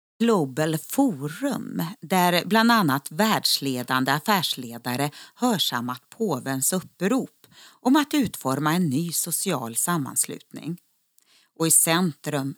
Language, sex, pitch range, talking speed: Swedish, female, 140-205 Hz, 95 wpm